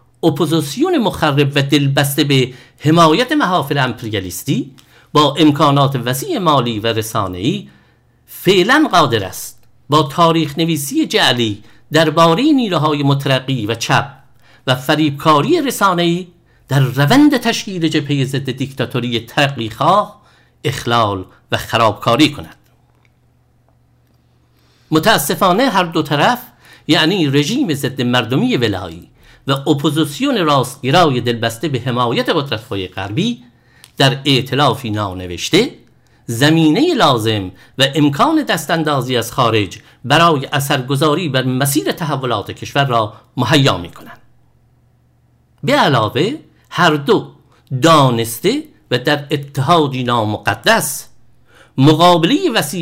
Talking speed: 100 wpm